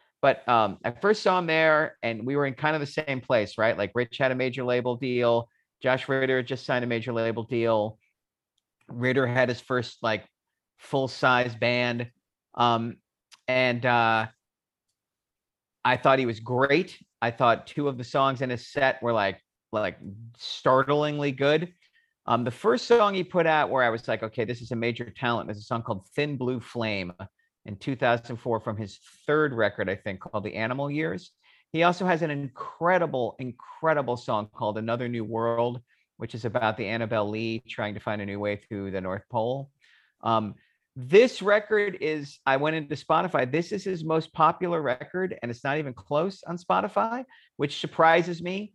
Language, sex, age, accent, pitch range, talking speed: English, male, 40-59, American, 115-155 Hz, 180 wpm